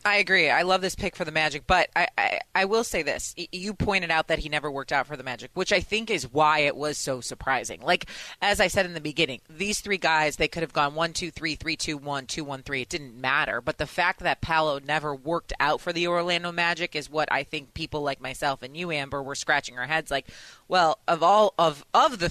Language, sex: English, female